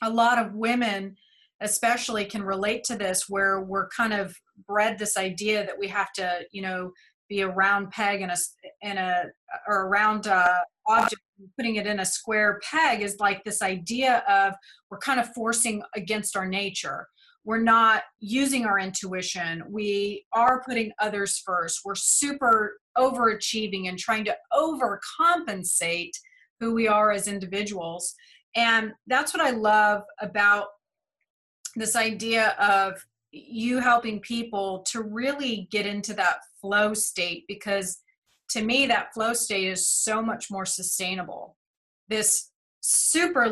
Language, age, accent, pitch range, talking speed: English, 30-49, American, 195-235 Hz, 145 wpm